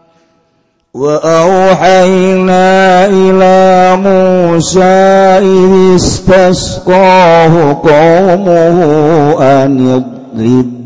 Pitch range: 130-170 Hz